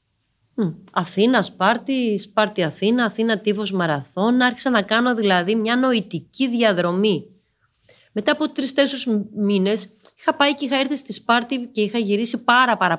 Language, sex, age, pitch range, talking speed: Greek, female, 30-49, 180-250 Hz, 135 wpm